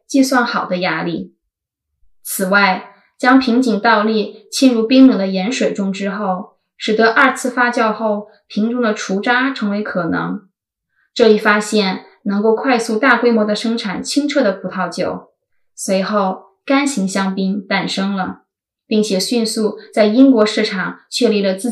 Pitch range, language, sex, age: 195-245 Hz, Chinese, female, 20-39